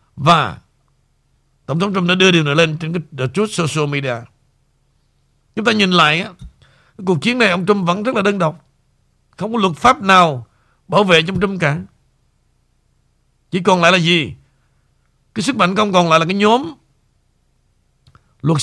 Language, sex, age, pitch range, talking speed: Vietnamese, male, 60-79, 135-195 Hz, 175 wpm